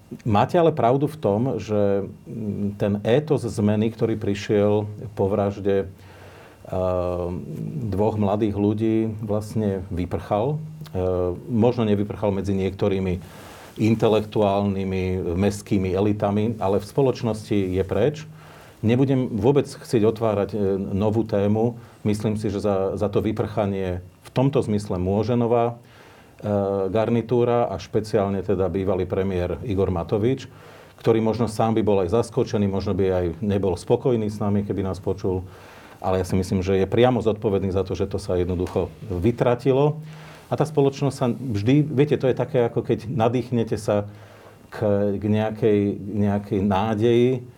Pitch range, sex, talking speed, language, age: 100-120 Hz, male, 130 wpm, Slovak, 40-59